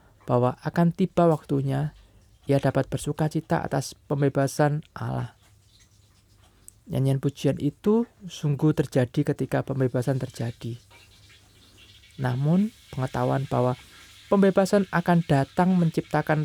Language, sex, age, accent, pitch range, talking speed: Indonesian, male, 20-39, native, 105-155 Hz, 95 wpm